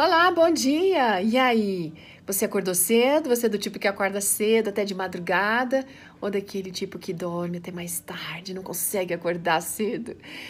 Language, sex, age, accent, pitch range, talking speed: Portuguese, female, 40-59, Brazilian, 185-230 Hz, 170 wpm